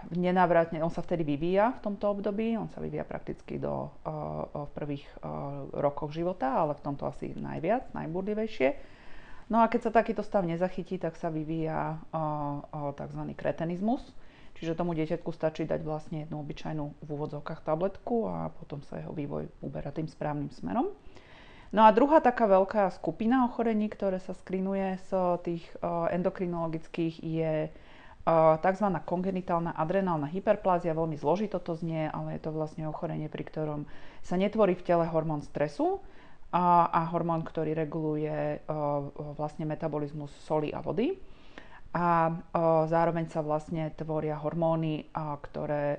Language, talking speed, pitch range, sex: Slovak, 140 wpm, 150-185 Hz, female